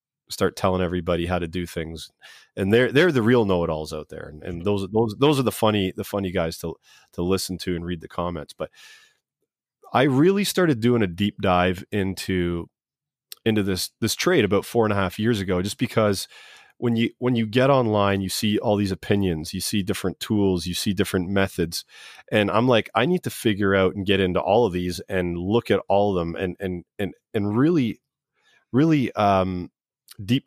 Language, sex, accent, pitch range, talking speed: English, male, American, 90-115 Hz, 210 wpm